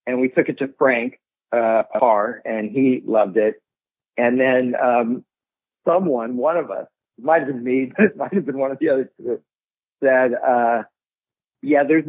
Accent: American